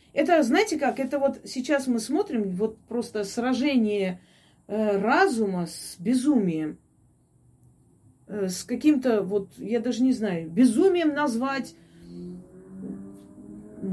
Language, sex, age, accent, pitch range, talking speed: Russian, female, 30-49, native, 195-270 Hz, 100 wpm